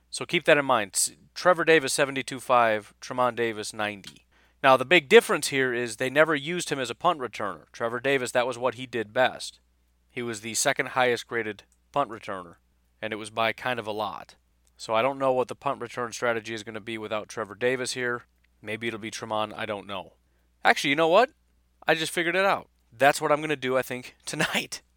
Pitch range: 105-130 Hz